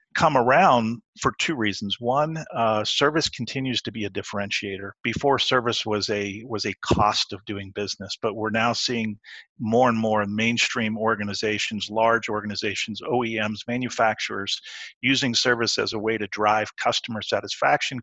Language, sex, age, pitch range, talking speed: English, male, 50-69, 105-125 Hz, 150 wpm